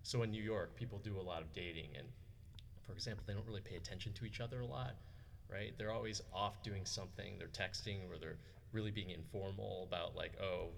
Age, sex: 30-49, male